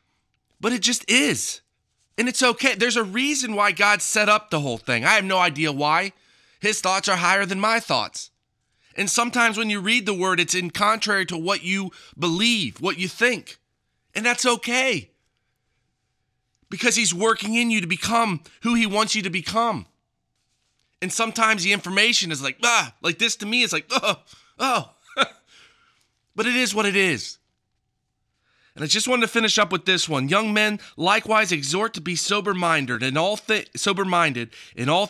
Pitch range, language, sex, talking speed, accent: 160-215 Hz, English, male, 180 wpm, American